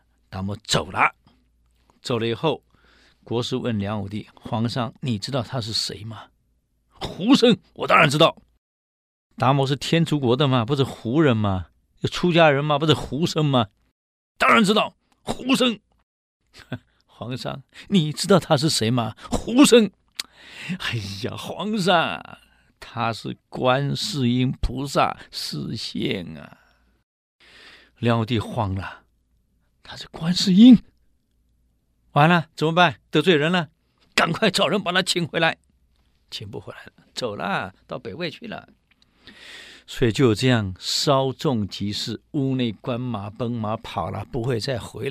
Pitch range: 100-160 Hz